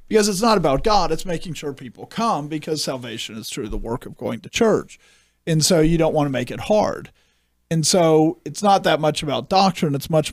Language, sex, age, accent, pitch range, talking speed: English, male, 40-59, American, 135-175 Hz, 225 wpm